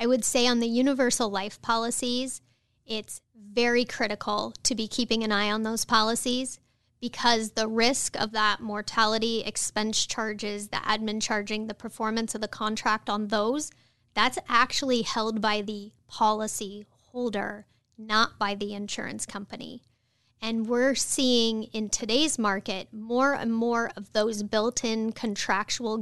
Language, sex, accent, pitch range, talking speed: English, female, American, 210-240 Hz, 145 wpm